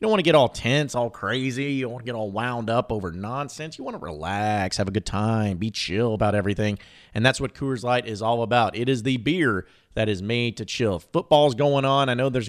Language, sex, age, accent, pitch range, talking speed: English, male, 30-49, American, 110-150 Hz, 260 wpm